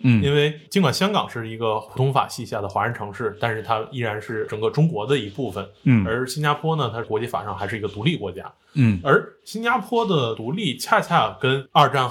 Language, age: Chinese, 20-39